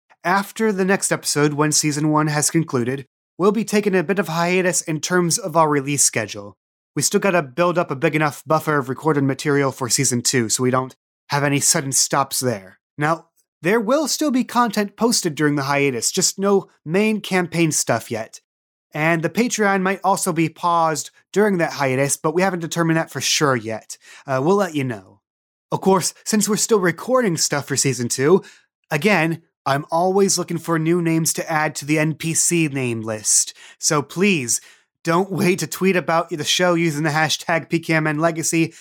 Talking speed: 185 wpm